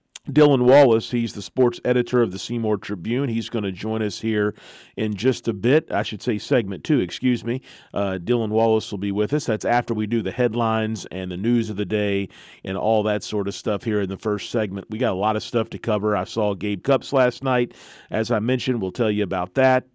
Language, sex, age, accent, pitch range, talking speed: English, male, 40-59, American, 105-125 Hz, 240 wpm